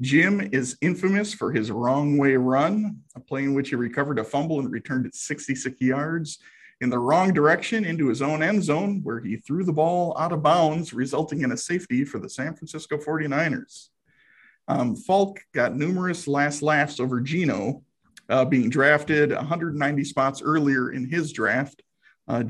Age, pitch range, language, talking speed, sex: 50-69, 130-165 Hz, English, 170 wpm, male